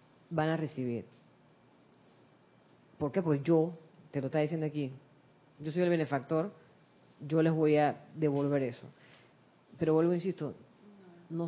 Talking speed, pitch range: 135 wpm, 150-190 Hz